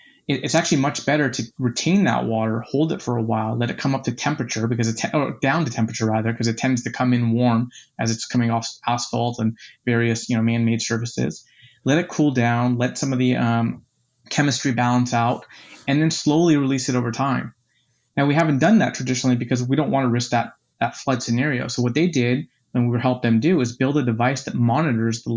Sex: male